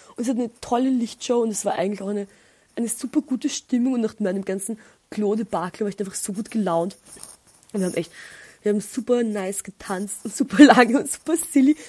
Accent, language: German, German